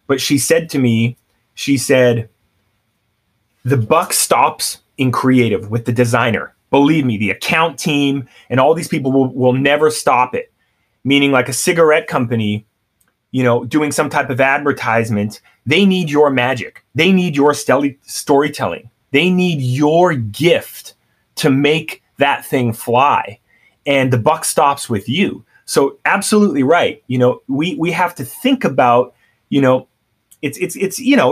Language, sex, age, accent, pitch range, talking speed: English, male, 30-49, American, 125-165 Hz, 155 wpm